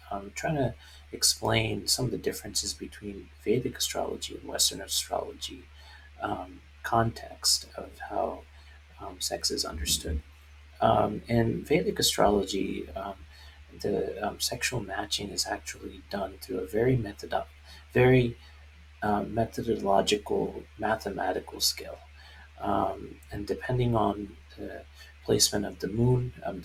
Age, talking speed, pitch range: 40-59, 120 wpm, 75-110 Hz